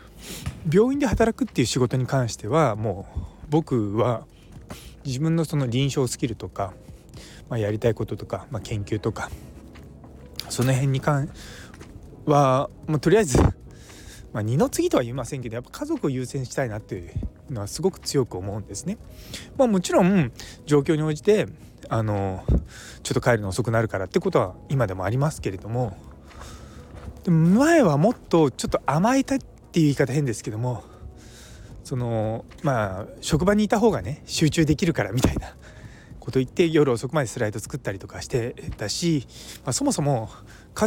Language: Japanese